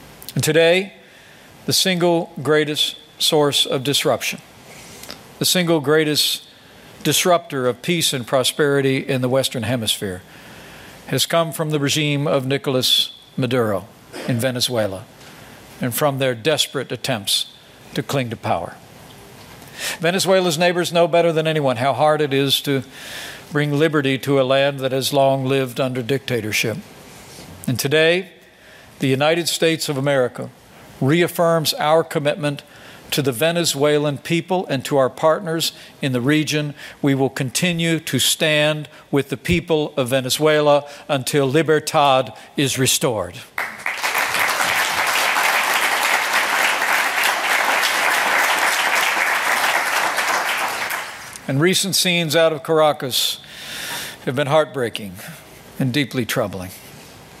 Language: English